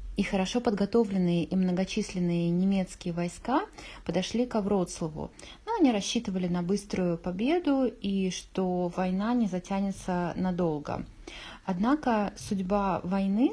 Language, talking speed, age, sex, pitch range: Polish, 110 wpm, 30-49, female, 175-210 Hz